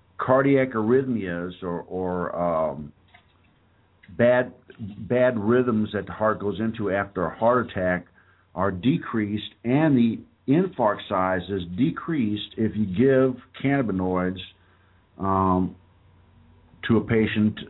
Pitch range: 95-120 Hz